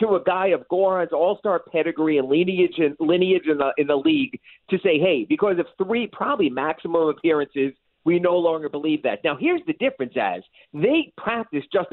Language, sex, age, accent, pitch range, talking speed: English, male, 40-59, American, 170-240 Hz, 190 wpm